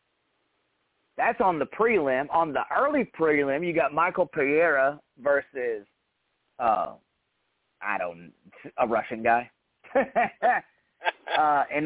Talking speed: 105 wpm